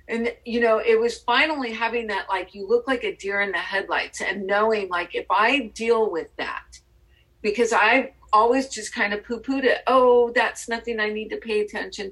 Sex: female